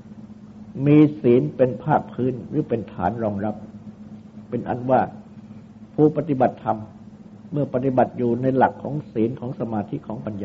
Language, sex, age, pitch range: Thai, male, 60-79, 105-135 Hz